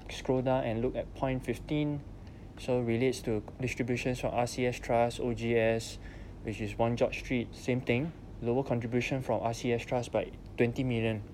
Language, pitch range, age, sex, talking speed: English, 100-120 Hz, 20-39, male, 165 wpm